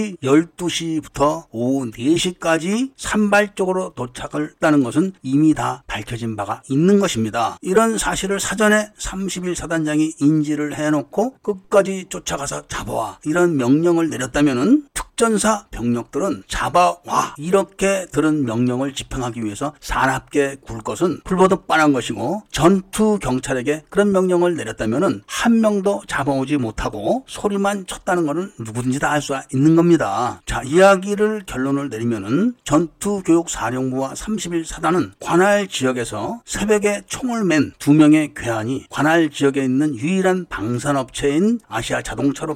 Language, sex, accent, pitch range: Korean, male, native, 140-195 Hz